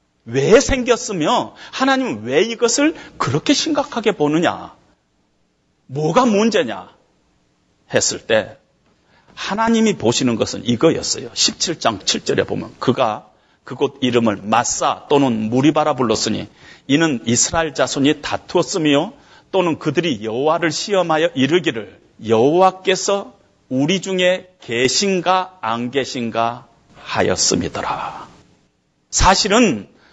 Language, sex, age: Korean, male, 40-59